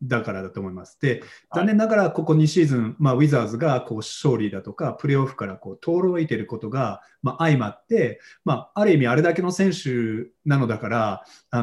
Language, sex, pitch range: Japanese, male, 115-165 Hz